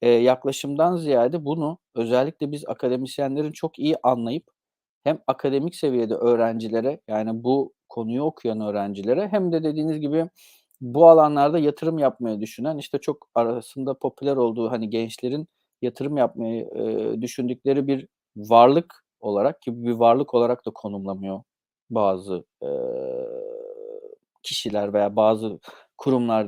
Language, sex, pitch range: Turkish, male, 115-155 Hz